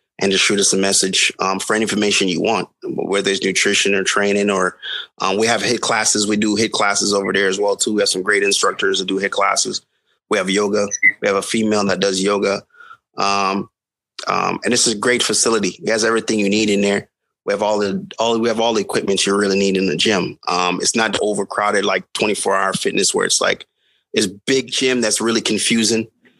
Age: 30-49